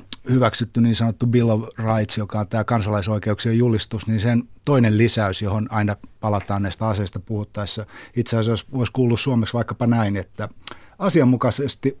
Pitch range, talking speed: 105-120 Hz, 145 wpm